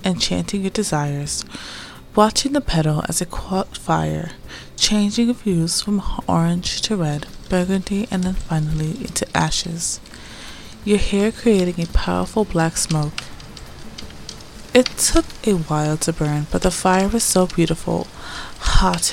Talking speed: 130 wpm